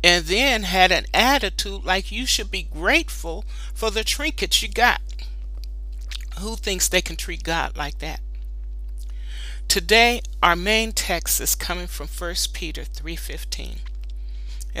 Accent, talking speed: American, 135 wpm